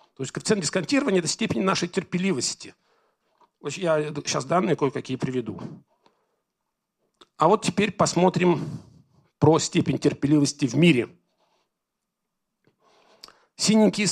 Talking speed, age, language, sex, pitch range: 100 wpm, 40-59, Russian, male, 135-180 Hz